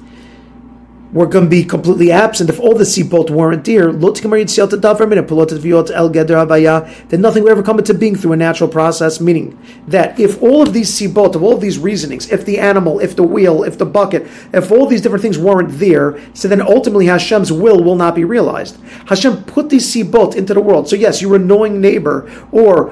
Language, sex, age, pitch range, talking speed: English, male, 40-59, 175-225 Hz, 195 wpm